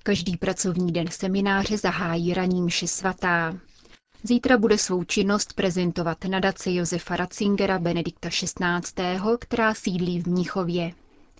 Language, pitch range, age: Czech, 175-200 Hz, 30-49